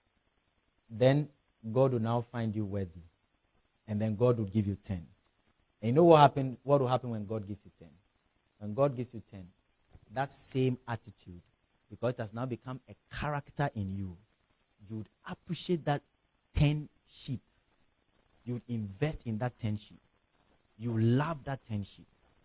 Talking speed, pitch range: 170 wpm, 100-135 Hz